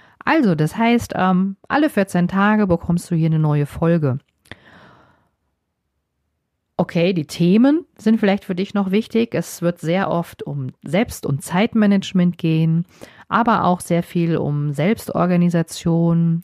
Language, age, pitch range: German, 40-59, 155-205 Hz